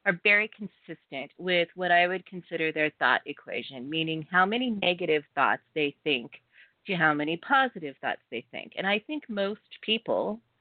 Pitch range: 160-210 Hz